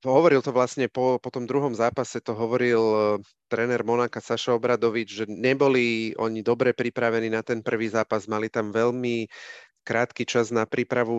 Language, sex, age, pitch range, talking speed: Slovak, male, 30-49, 110-130 Hz, 170 wpm